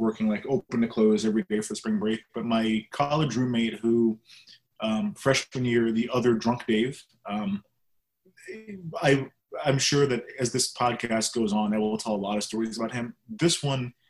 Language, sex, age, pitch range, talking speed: English, male, 20-39, 110-135 Hz, 185 wpm